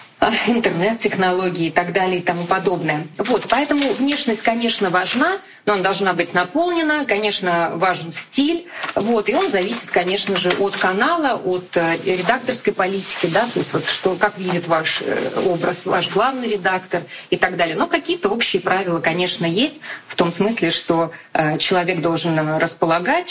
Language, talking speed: Russian, 150 wpm